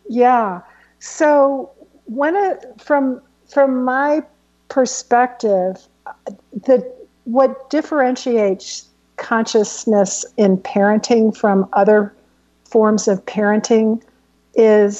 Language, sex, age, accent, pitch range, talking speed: English, female, 50-69, American, 205-250 Hz, 80 wpm